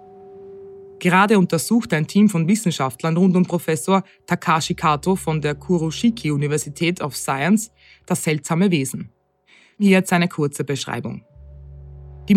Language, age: German, 20-39